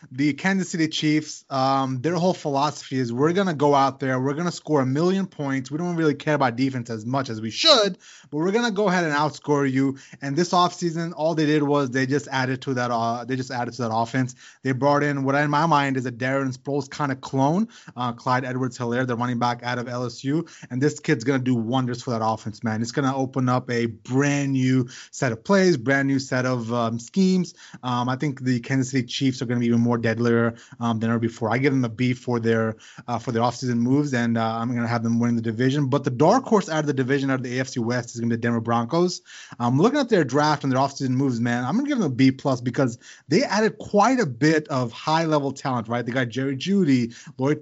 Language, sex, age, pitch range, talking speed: English, male, 20-39, 125-155 Hz, 255 wpm